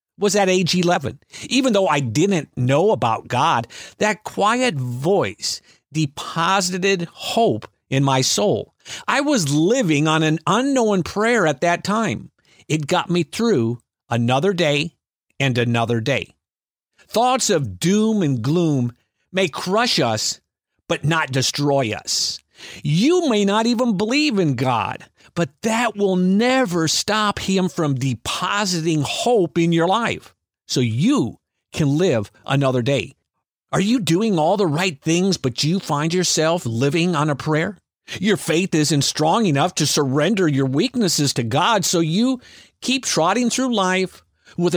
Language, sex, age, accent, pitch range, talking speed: English, male, 50-69, American, 140-200 Hz, 145 wpm